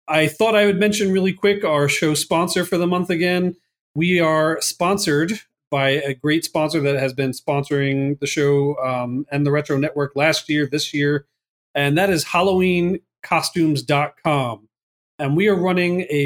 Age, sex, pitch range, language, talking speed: 40-59, male, 145-180 Hz, English, 165 wpm